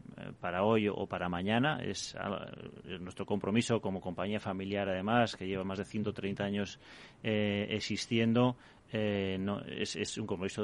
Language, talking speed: Spanish, 150 wpm